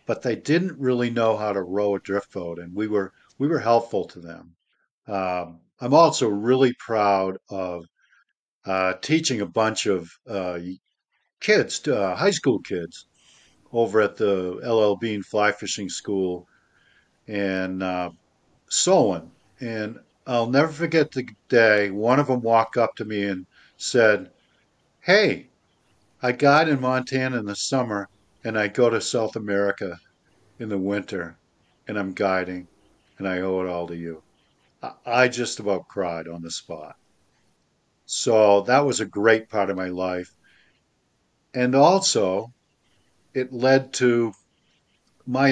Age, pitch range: 50-69, 95-125 Hz